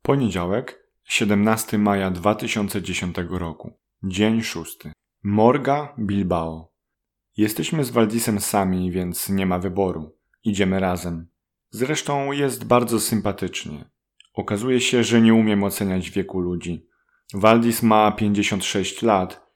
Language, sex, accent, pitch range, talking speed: Polish, male, native, 95-115 Hz, 105 wpm